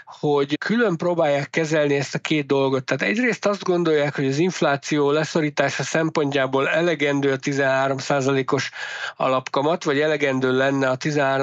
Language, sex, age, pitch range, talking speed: Hungarian, male, 60-79, 140-160 Hz, 130 wpm